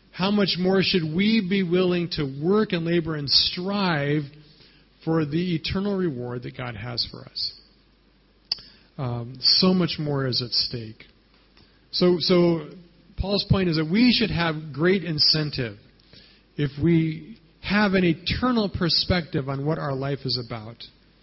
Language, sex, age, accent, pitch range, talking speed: English, male, 40-59, American, 140-185 Hz, 145 wpm